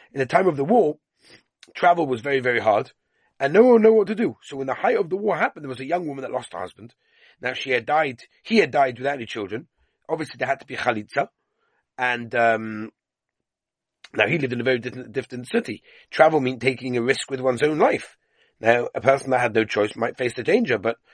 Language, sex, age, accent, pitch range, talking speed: English, male, 30-49, British, 110-170 Hz, 235 wpm